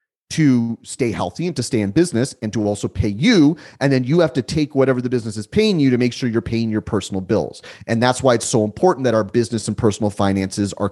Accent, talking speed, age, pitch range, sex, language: American, 255 wpm, 30-49, 110-140 Hz, male, English